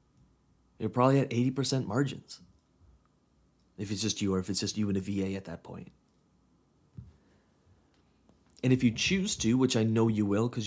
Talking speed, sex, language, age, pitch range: 175 wpm, male, English, 30-49, 100-130 Hz